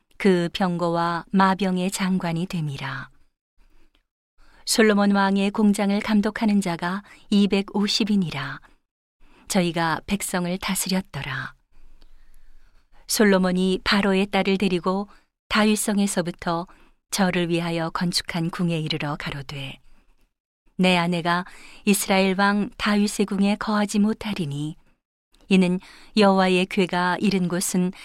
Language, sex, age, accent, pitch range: Korean, female, 40-59, native, 170-200 Hz